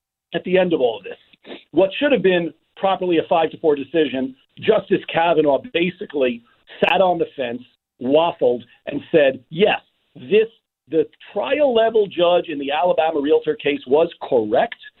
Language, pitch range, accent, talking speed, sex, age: English, 160-260 Hz, American, 160 wpm, male, 50-69